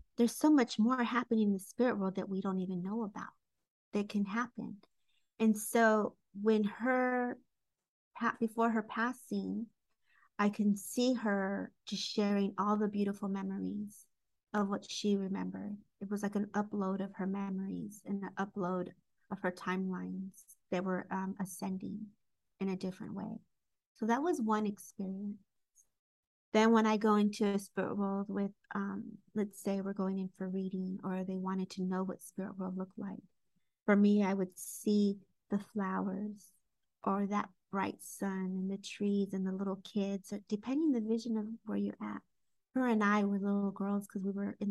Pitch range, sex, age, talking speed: 195-215 Hz, female, 40-59, 175 wpm